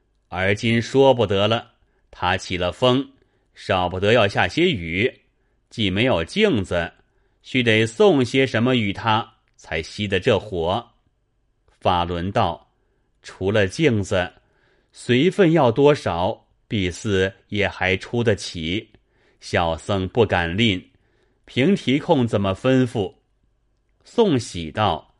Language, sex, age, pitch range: Chinese, male, 30-49, 95-125 Hz